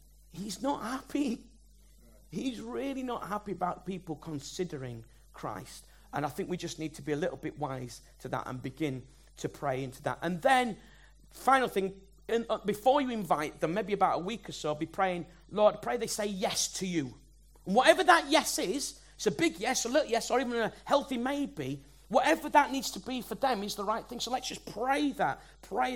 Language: English